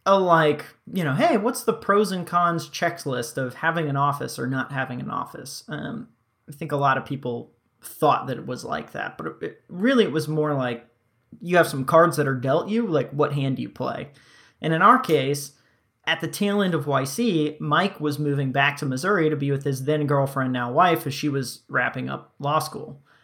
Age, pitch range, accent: 20-39, 130-160 Hz, American